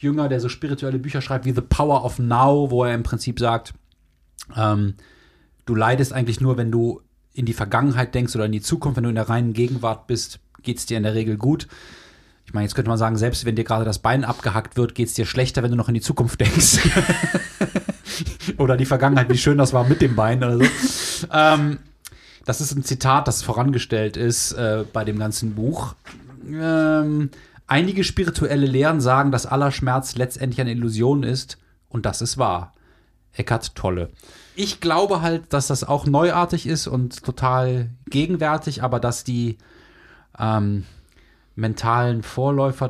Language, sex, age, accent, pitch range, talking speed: German, male, 30-49, German, 110-140 Hz, 180 wpm